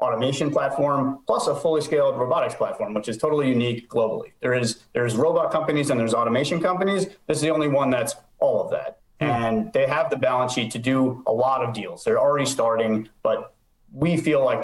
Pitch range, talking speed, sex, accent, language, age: 115-145 Hz, 200 wpm, male, American, English, 30-49